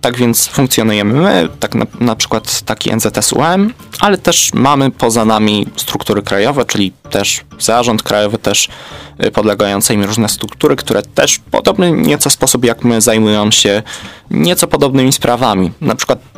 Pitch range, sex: 105-125 Hz, male